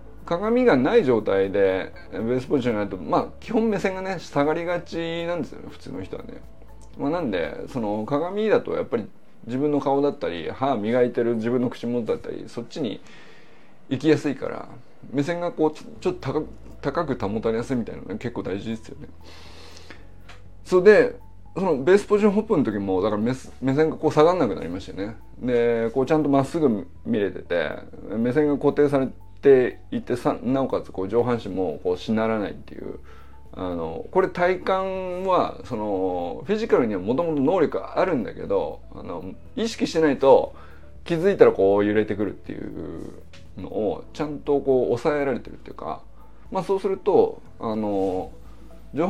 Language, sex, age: Japanese, male, 20-39